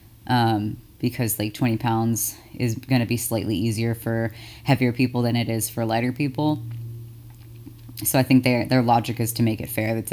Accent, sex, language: American, female, English